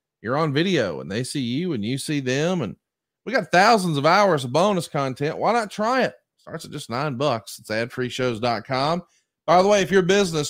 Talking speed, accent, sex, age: 210 wpm, American, male, 30-49